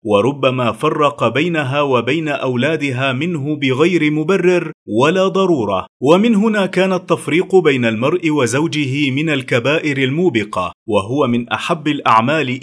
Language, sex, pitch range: Arabic, male, 140-175 Hz